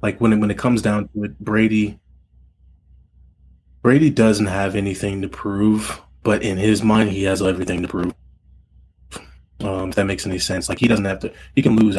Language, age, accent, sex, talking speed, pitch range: English, 20-39, American, male, 190 wpm, 70-105 Hz